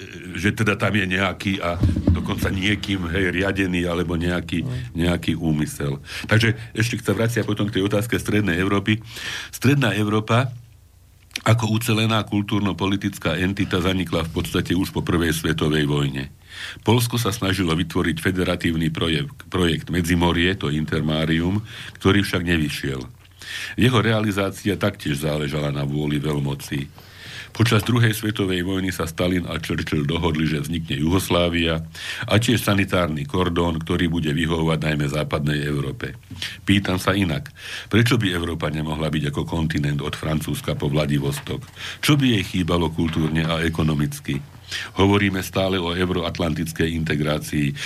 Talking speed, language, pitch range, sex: 135 wpm, Slovak, 80-100 Hz, male